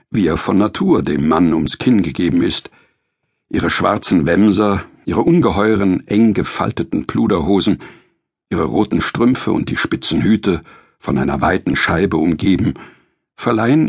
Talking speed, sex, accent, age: 135 wpm, male, German, 60-79